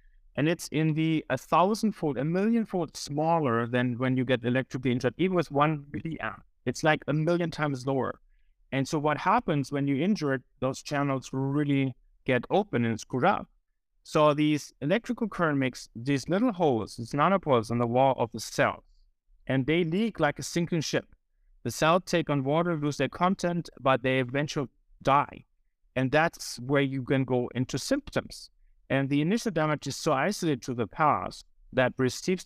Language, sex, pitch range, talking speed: English, male, 130-155 Hz, 175 wpm